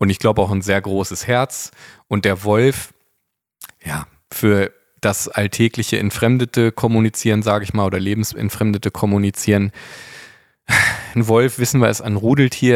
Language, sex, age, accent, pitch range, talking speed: German, male, 20-39, German, 100-120 Hz, 140 wpm